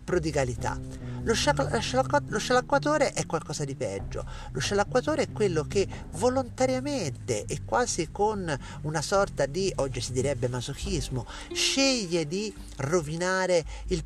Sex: male